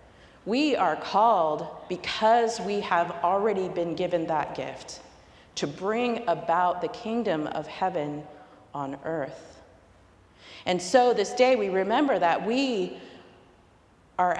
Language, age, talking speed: English, 40-59, 120 wpm